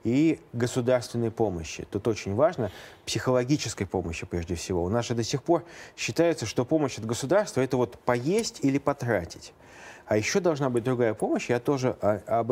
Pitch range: 110-140 Hz